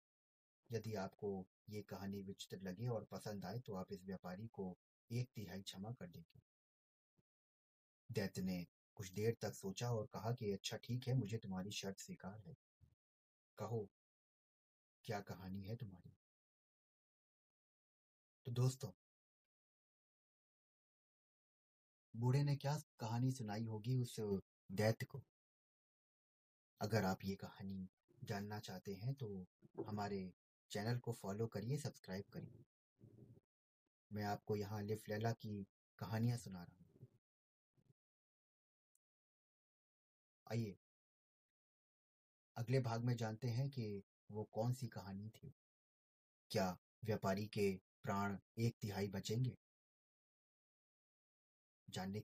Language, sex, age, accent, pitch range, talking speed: Hindi, male, 30-49, native, 95-115 Hz, 100 wpm